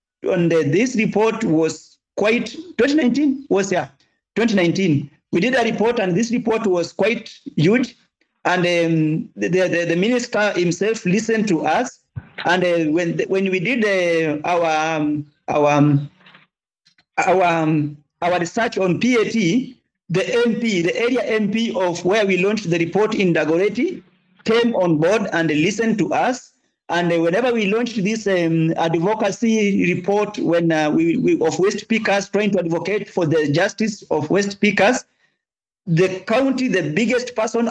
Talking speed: 150 wpm